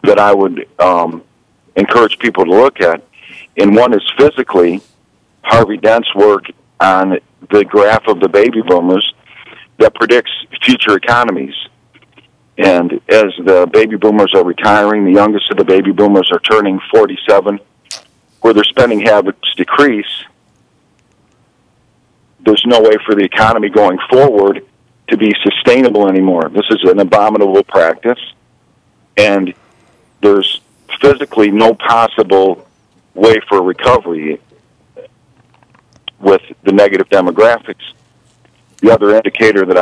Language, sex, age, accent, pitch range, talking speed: English, male, 50-69, American, 100-125 Hz, 120 wpm